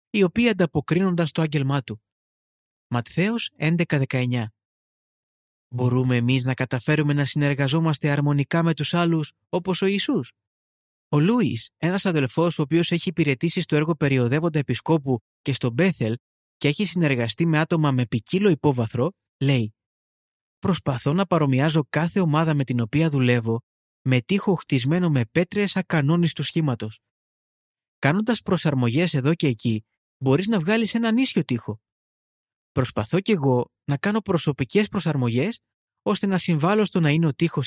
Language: Greek